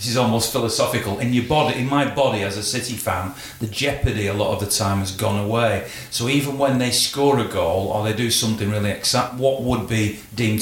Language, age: English, 40-59